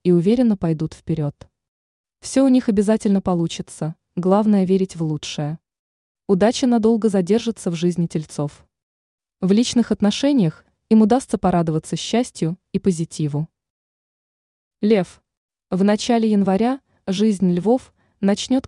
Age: 20-39